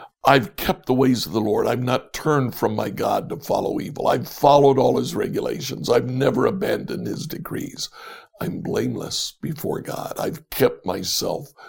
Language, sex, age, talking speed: English, male, 60-79, 170 wpm